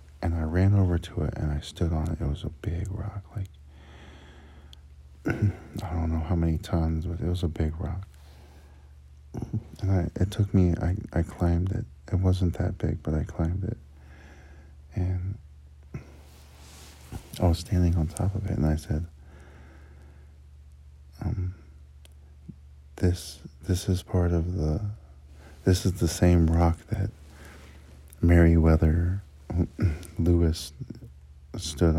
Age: 50-69